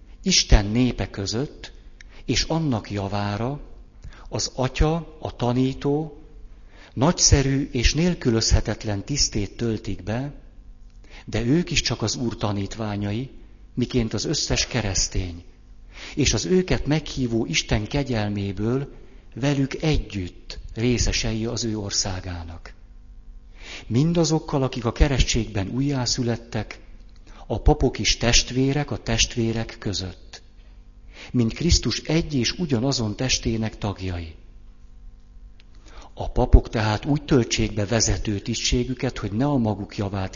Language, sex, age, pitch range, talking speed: Hungarian, male, 50-69, 95-125 Hz, 105 wpm